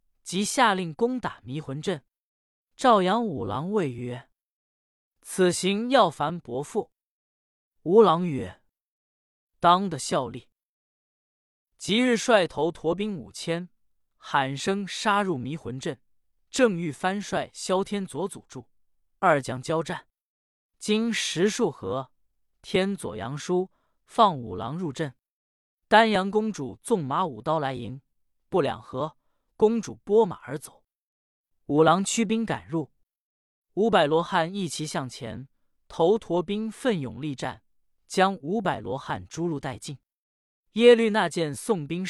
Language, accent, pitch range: Chinese, native, 135-205 Hz